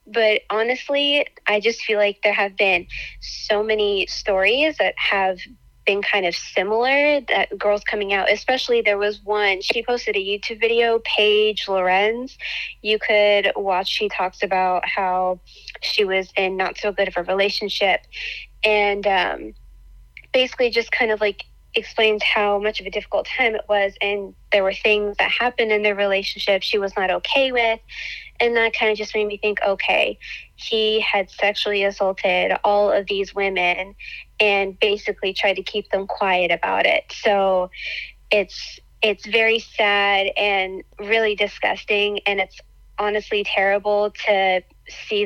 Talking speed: 160 wpm